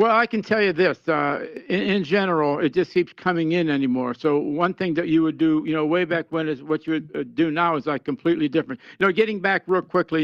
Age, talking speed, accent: 60-79, 260 wpm, American